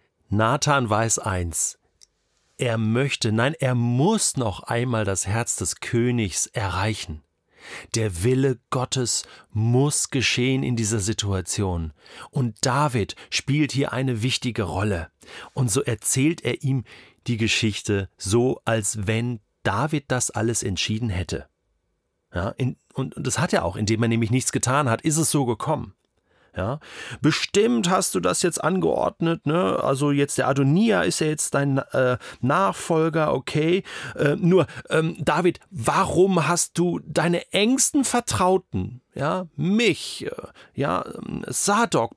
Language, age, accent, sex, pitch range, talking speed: German, 40-59, German, male, 115-180 Hz, 135 wpm